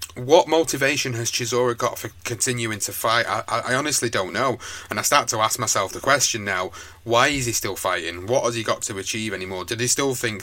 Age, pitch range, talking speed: 30-49, 95-125 Hz, 225 wpm